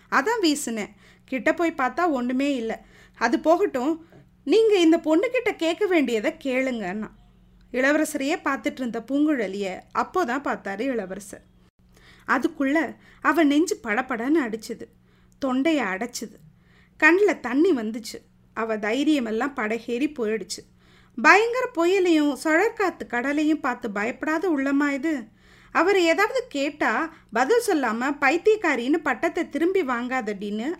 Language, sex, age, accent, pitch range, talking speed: Tamil, female, 30-49, native, 230-325 Hz, 105 wpm